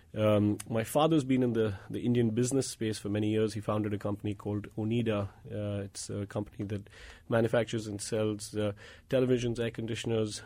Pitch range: 105-120 Hz